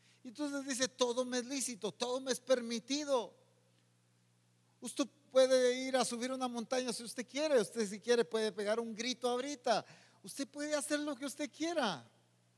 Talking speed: 170 wpm